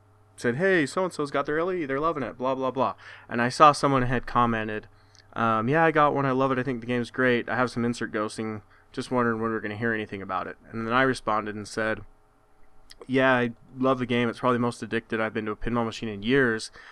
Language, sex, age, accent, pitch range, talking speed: English, male, 20-39, American, 110-135 Hz, 245 wpm